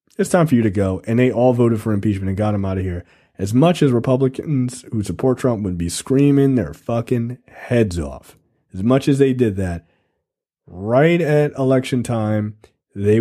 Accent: American